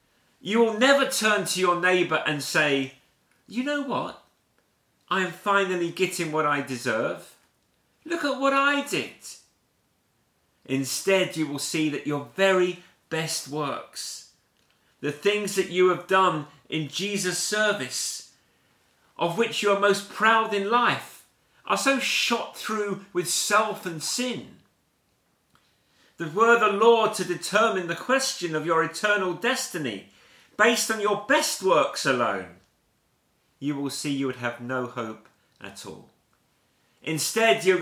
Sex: male